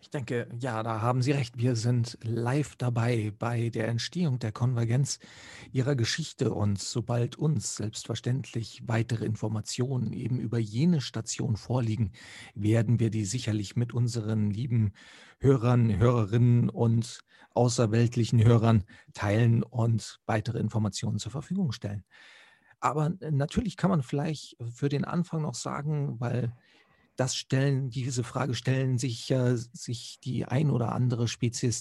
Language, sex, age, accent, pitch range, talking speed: German, male, 40-59, German, 110-130 Hz, 135 wpm